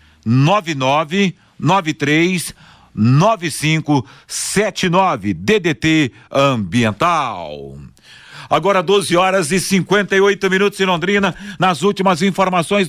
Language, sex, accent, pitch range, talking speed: Portuguese, male, Brazilian, 160-190 Hz, 70 wpm